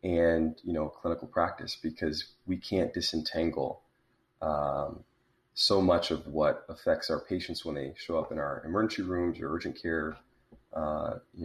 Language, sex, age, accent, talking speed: English, male, 30-49, American, 155 wpm